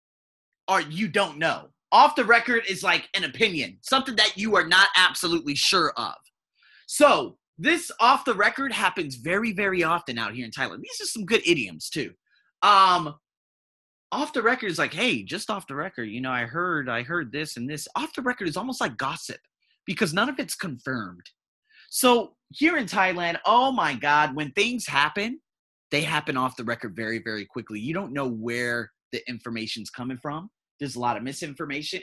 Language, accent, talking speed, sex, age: English, American, 190 wpm, male, 30-49